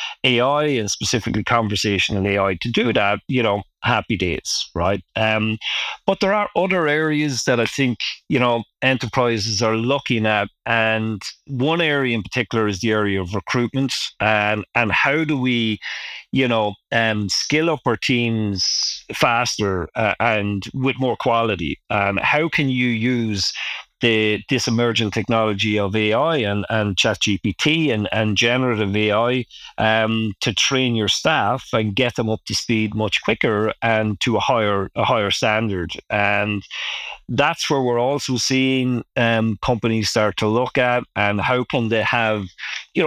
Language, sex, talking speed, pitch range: English, male, 155 wpm, 105-125 Hz